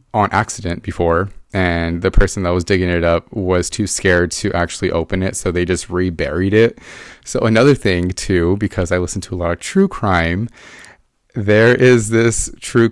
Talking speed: 185 wpm